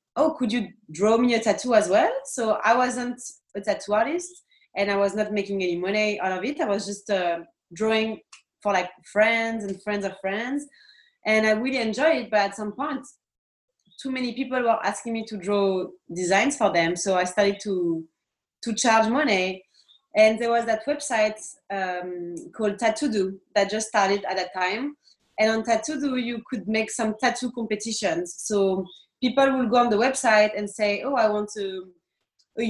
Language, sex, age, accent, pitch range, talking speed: English, female, 30-49, French, 195-245 Hz, 190 wpm